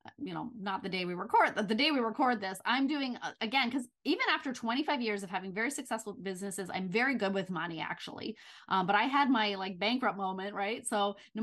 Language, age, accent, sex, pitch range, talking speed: English, 20-39, American, female, 190-245 Hz, 220 wpm